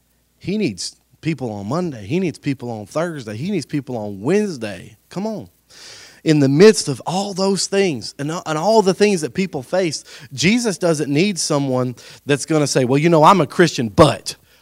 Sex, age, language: male, 30-49, English